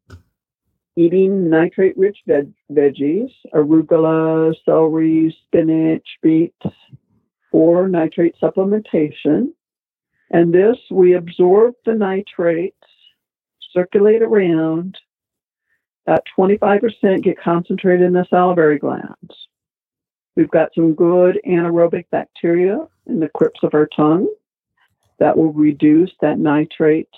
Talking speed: 95 wpm